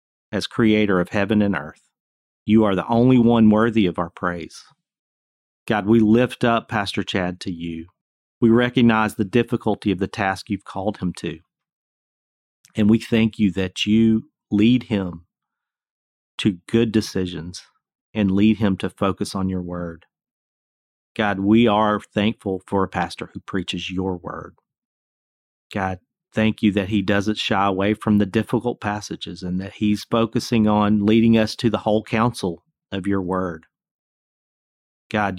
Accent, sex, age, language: American, male, 40-59, English